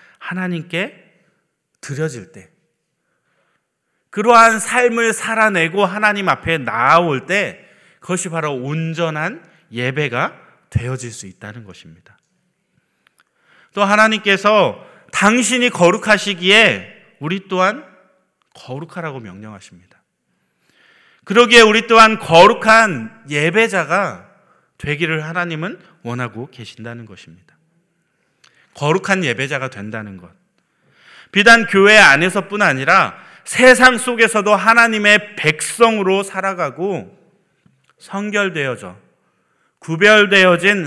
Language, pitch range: Korean, 135-205 Hz